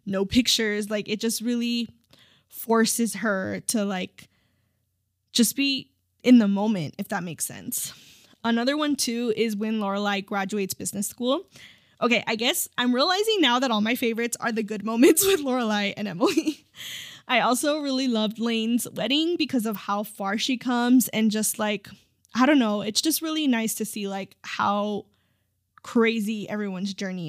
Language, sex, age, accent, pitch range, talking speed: English, female, 10-29, American, 205-250 Hz, 165 wpm